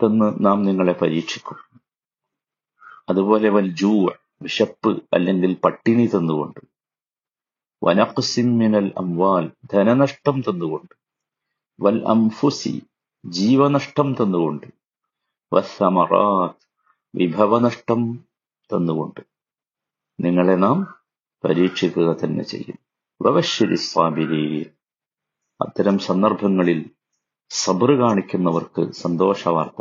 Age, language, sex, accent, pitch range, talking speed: 50-69, Malayalam, male, native, 90-115 Hz, 50 wpm